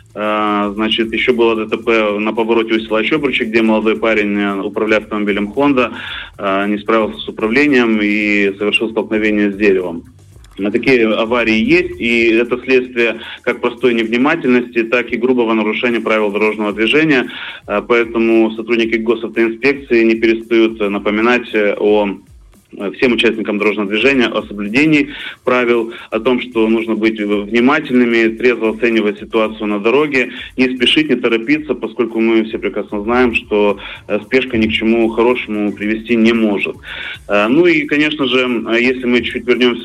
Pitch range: 105-125 Hz